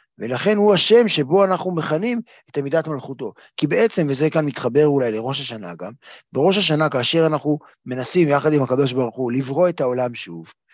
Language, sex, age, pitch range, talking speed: Hebrew, male, 30-49, 140-185 Hz, 180 wpm